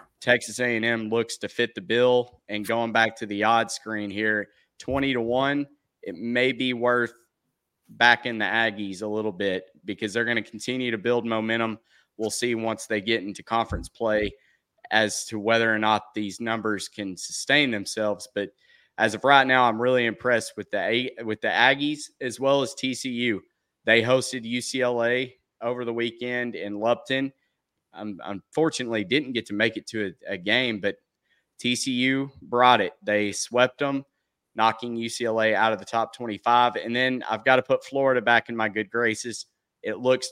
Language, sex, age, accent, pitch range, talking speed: English, male, 20-39, American, 110-125 Hz, 175 wpm